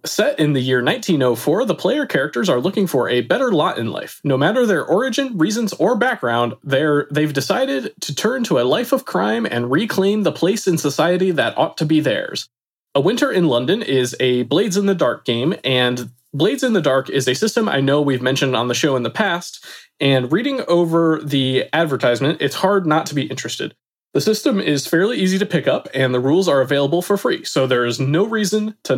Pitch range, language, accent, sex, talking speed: 125-170 Hz, English, American, male, 215 wpm